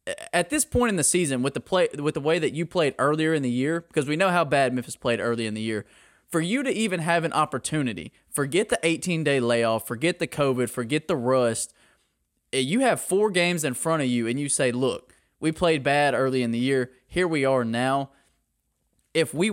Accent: American